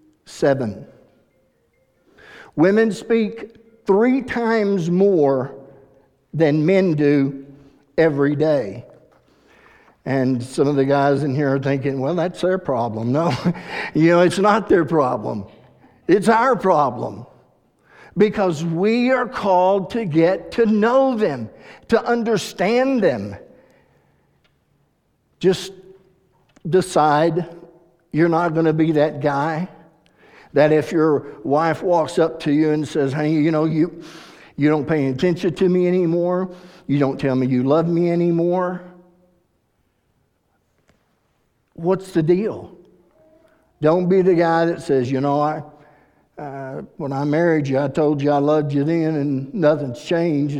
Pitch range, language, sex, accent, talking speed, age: 145-185 Hz, English, male, American, 130 wpm, 60-79